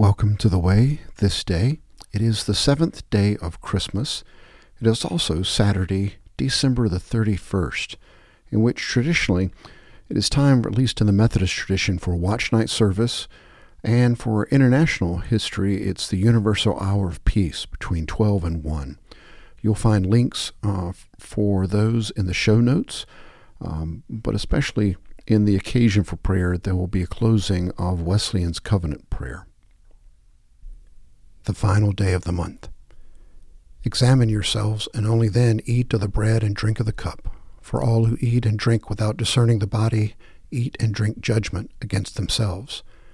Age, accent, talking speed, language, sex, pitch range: 50-69, American, 155 wpm, English, male, 95-115 Hz